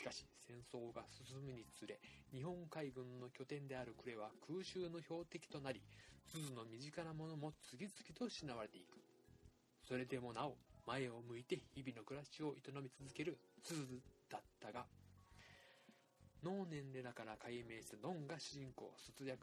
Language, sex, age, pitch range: Japanese, male, 20-39, 110-155 Hz